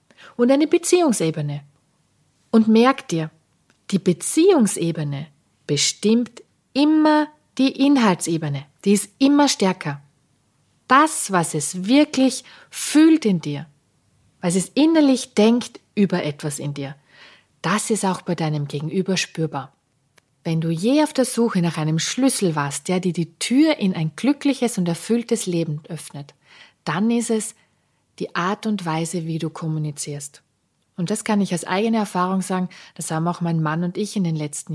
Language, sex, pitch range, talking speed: German, female, 160-220 Hz, 150 wpm